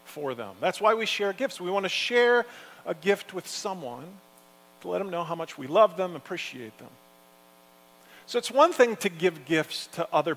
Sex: male